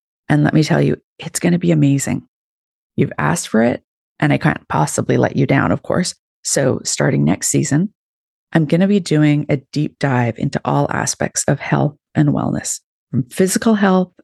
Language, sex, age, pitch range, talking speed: English, female, 30-49, 140-185 Hz, 190 wpm